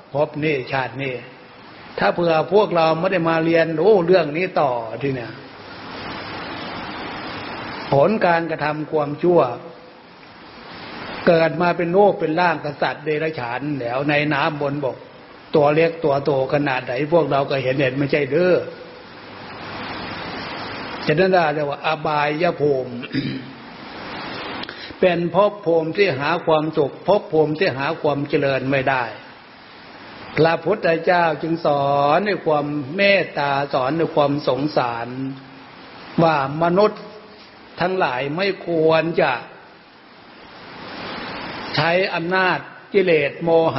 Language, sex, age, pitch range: Thai, male, 60-79, 145-175 Hz